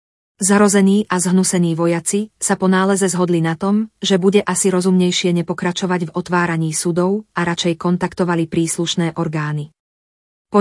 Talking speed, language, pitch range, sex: 135 wpm, Slovak, 170-195 Hz, female